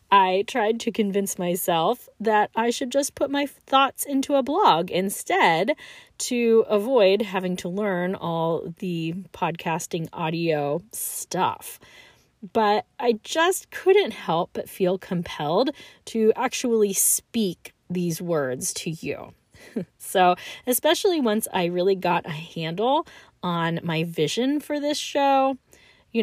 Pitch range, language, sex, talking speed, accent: 175-250 Hz, English, female, 130 wpm, American